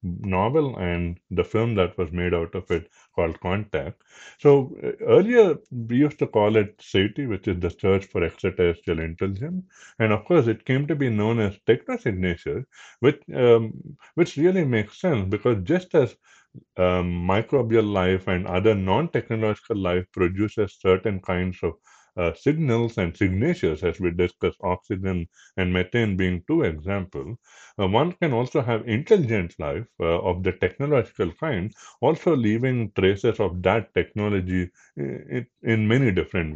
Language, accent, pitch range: English, Indian, 90-120 Hz